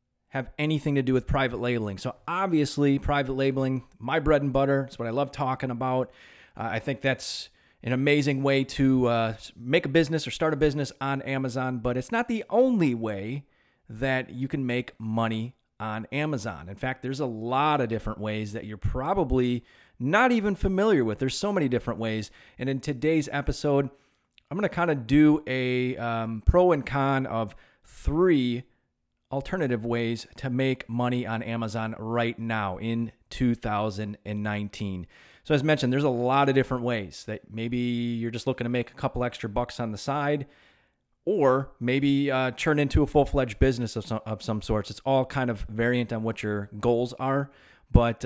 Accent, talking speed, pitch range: American, 180 wpm, 115-140 Hz